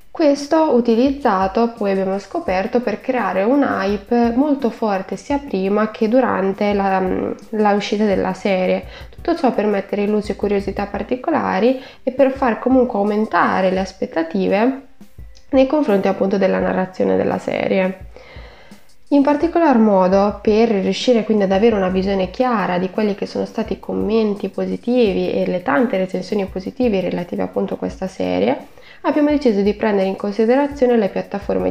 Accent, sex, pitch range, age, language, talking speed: native, female, 190-250 Hz, 20-39, Italian, 150 wpm